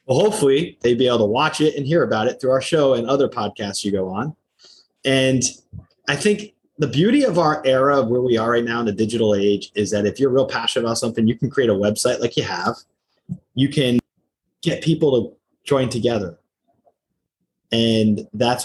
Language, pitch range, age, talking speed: English, 110-145 Hz, 30-49, 205 wpm